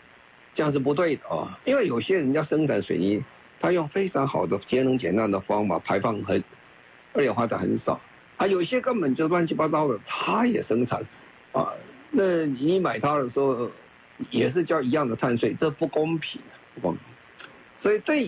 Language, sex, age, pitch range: Chinese, male, 50-69, 115-170 Hz